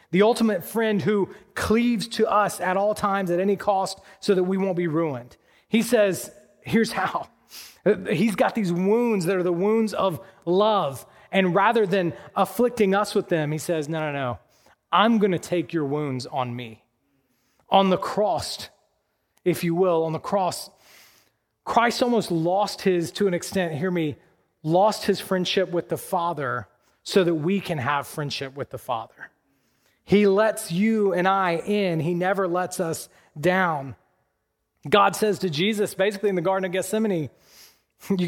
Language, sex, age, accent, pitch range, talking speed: English, male, 30-49, American, 150-200 Hz, 170 wpm